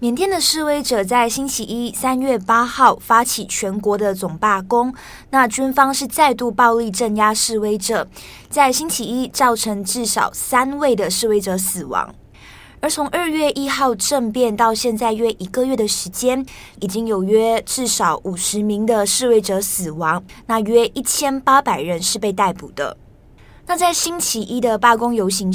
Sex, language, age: female, Chinese, 20-39